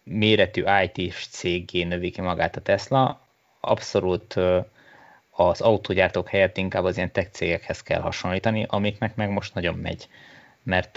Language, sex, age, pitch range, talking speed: Hungarian, male, 20-39, 90-100 Hz, 120 wpm